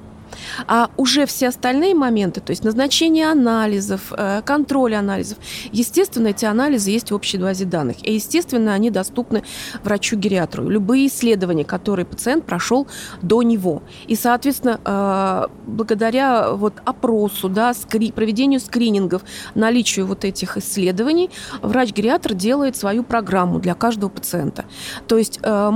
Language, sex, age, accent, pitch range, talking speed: Russian, female, 20-39, native, 195-245 Hz, 120 wpm